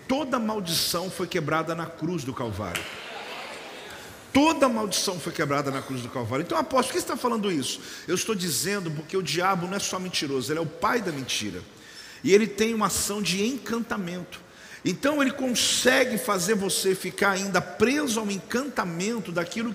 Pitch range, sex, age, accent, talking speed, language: 170-235 Hz, male, 50-69, Brazilian, 175 wpm, Portuguese